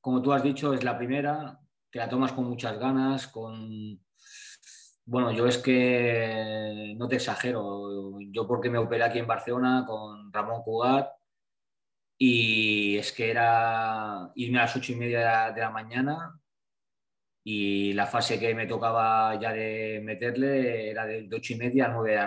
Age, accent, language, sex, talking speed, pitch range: 20-39, Spanish, Spanish, male, 165 wpm, 105-125 Hz